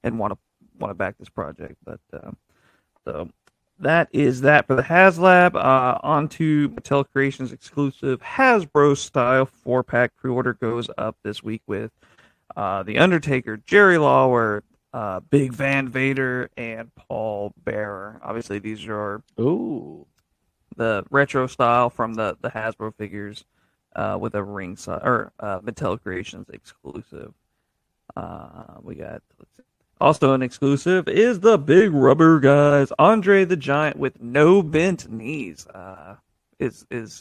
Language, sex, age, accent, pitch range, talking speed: English, male, 40-59, American, 115-145 Hz, 140 wpm